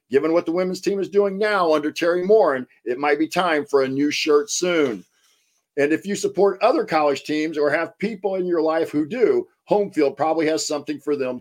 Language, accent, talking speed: English, American, 215 wpm